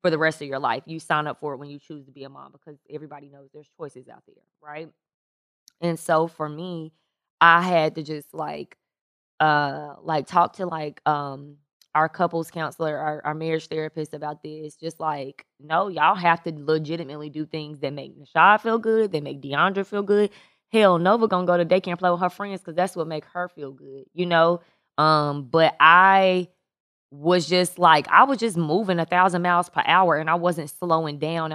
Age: 20-39